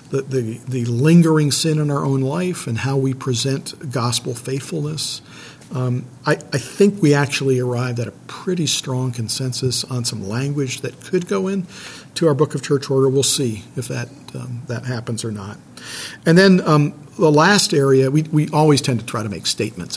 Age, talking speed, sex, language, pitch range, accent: 50-69, 190 wpm, male, English, 125-150 Hz, American